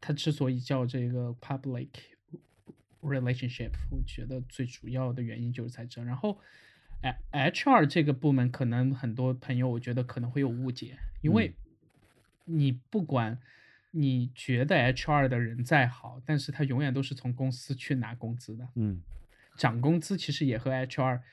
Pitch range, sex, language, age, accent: 125-145 Hz, male, Chinese, 20-39, native